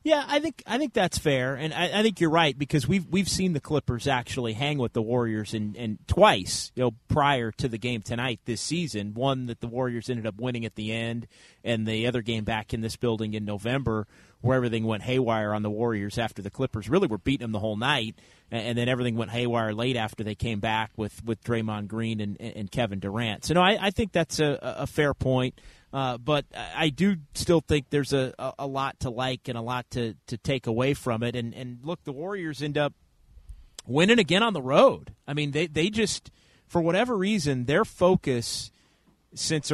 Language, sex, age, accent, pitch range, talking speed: English, male, 30-49, American, 115-165 Hz, 220 wpm